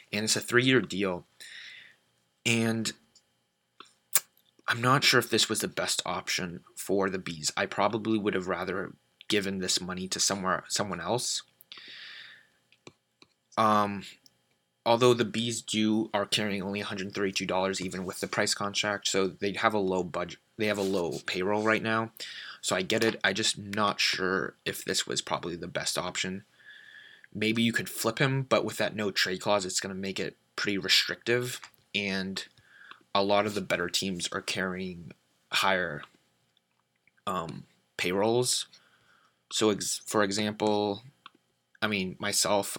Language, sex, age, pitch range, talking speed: English, male, 20-39, 95-110 Hz, 150 wpm